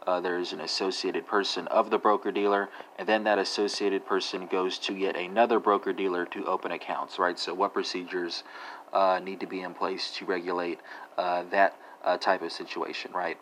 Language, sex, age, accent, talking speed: English, male, 30-49, American, 180 wpm